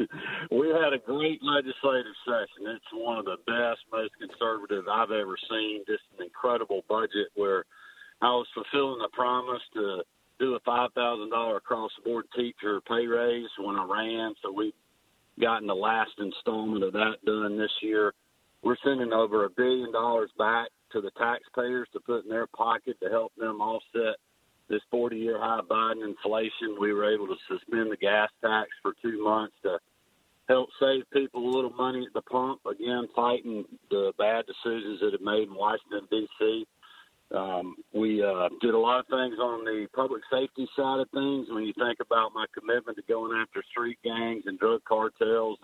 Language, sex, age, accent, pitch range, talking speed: English, male, 50-69, American, 110-135 Hz, 180 wpm